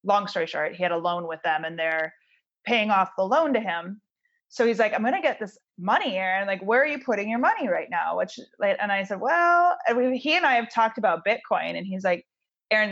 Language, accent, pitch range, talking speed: English, American, 190-275 Hz, 250 wpm